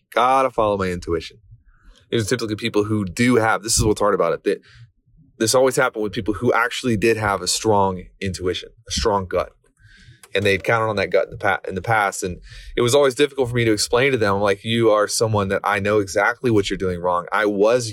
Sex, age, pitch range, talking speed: male, 20-39, 95-120 Hz, 235 wpm